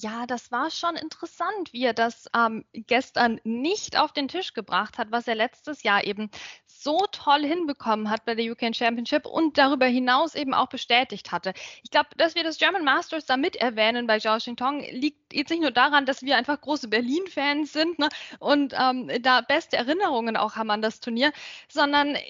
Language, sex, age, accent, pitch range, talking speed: German, female, 10-29, German, 240-310 Hz, 195 wpm